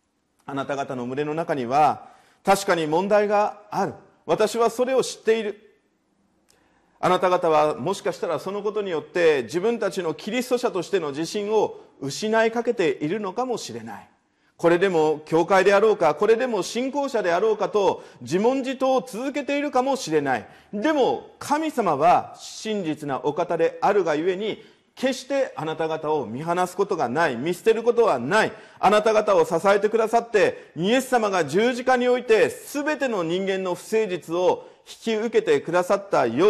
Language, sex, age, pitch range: Japanese, male, 40-59, 165-255 Hz